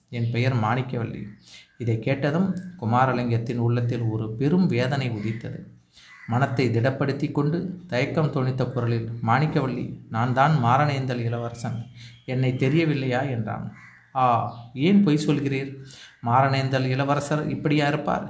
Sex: male